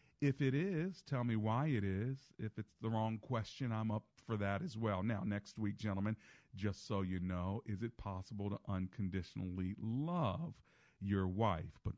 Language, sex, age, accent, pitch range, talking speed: English, male, 50-69, American, 100-140 Hz, 180 wpm